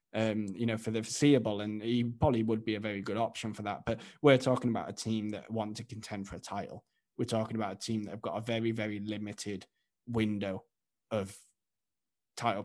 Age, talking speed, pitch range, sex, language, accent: 20-39, 215 wpm, 105-120 Hz, male, English, British